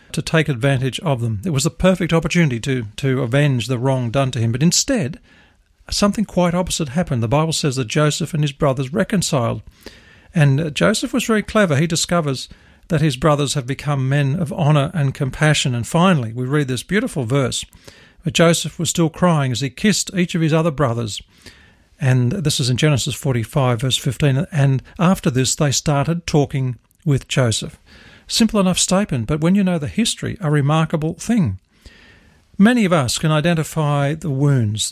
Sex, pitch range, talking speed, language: male, 130-170 Hz, 180 wpm, English